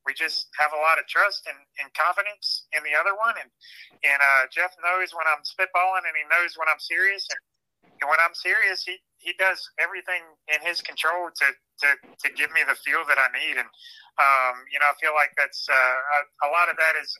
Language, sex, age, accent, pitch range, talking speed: English, male, 30-49, American, 140-180 Hz, 225 wpm